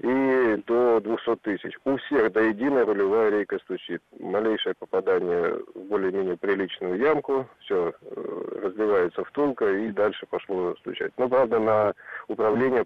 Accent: native